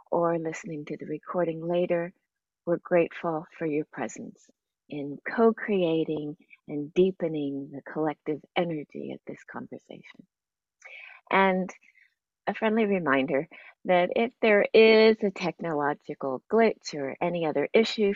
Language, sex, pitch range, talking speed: English, female, 150-210 Hz, 120 wpm